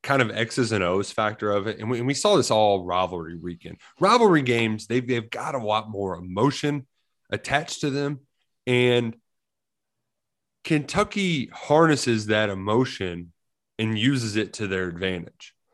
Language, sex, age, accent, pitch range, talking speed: English, male, 30-49, American, 105-135 Hz, 155 wpm